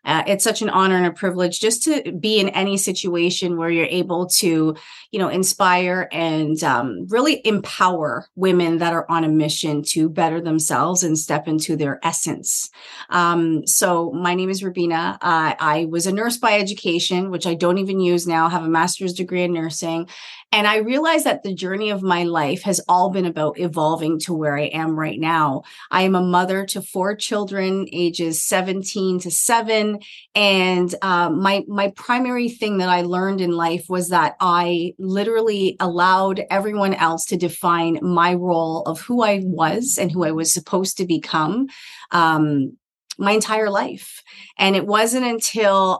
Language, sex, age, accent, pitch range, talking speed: English, female, 30-49, American, 170-210 Hz, 175 wpm